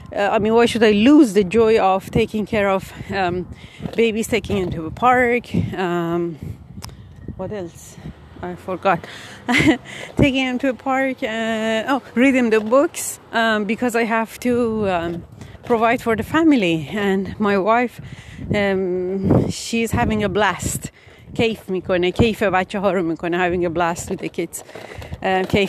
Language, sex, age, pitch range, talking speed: Persian, female, 30-49, 185-240 Hz, 140 wpm